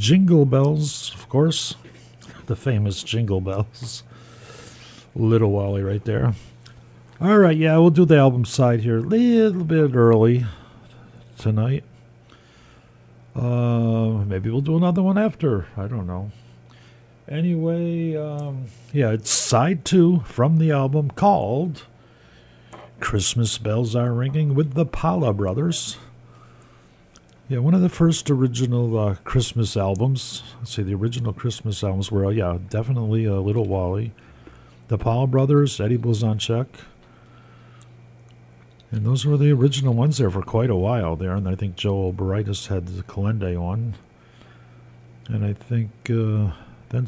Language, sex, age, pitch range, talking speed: English, male, 50-69, 100-135 Hz, 135 wpm